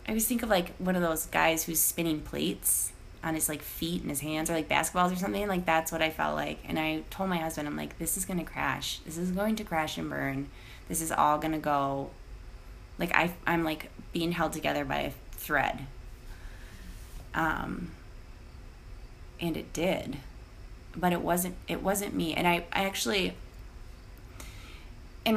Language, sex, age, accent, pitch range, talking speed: English, female, 20-39, American, 130-170 Hz, 190 wpm